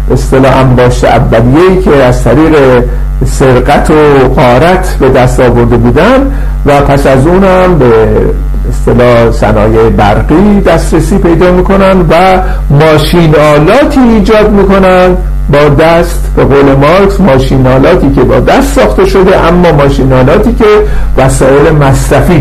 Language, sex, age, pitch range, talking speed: Persian, male, 50-69, 125-170 Hz, 115 wpm